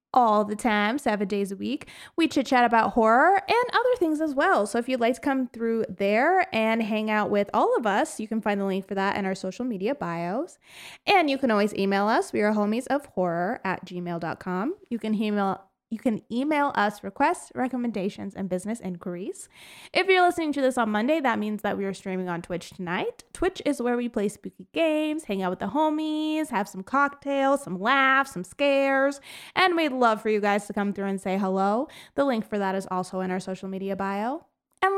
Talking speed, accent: 220 wpm, American